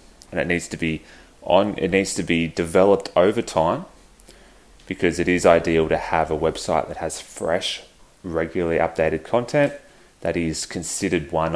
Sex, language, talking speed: male, English, 160 wpm